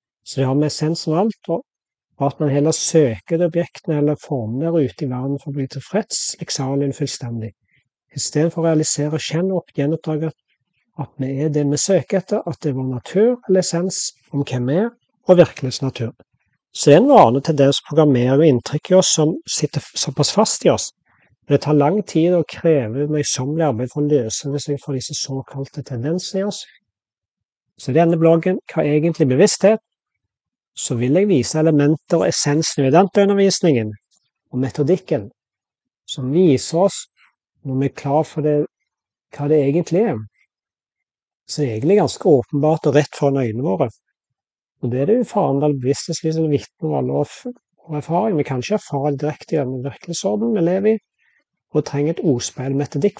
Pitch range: 135-170 Hz